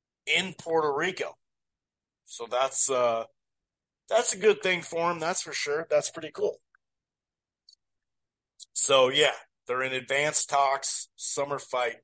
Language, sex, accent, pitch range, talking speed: English, male, American, 125-195 Hz, 130 wpm